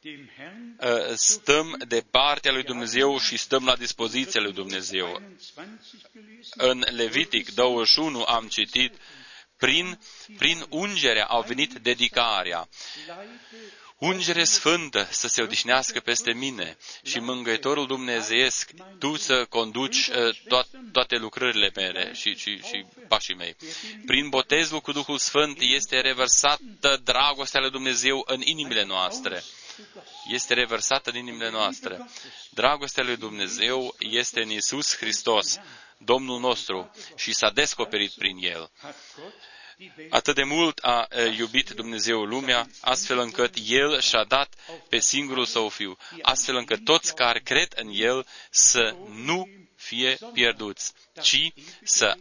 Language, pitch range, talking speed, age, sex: Romanian, 120-155 Hz, 120 wpm, 30-49, male